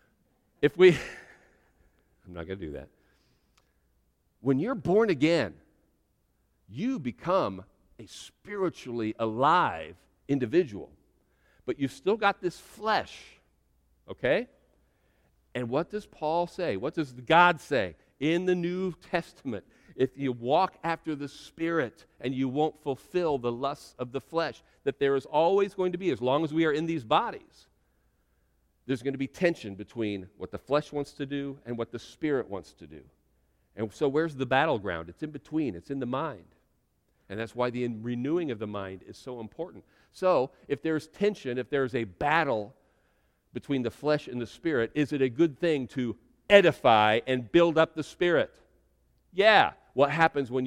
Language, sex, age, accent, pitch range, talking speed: English, male, 50-69, American, 110-160 Hz, 165 wpm